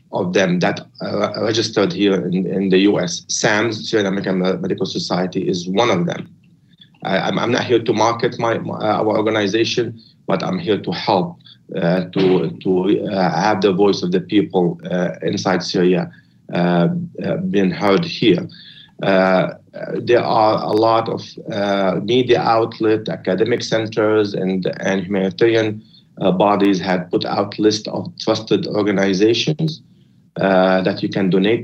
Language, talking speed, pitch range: English, 150 wpm, 95-115 Hz